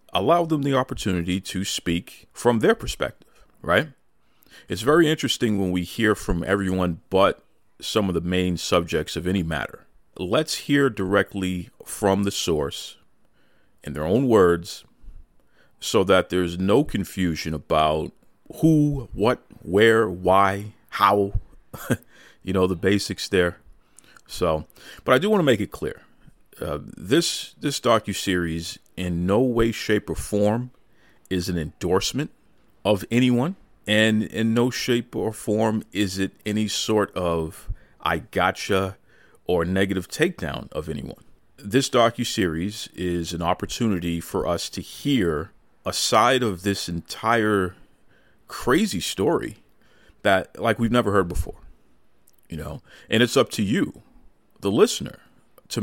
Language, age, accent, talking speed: English, 40-59, American, 140 wpm